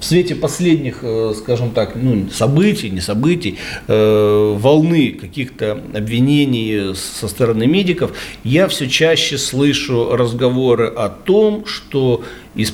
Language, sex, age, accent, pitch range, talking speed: Russian, male, 40-59, native, 105-135 Hz, 120 wpm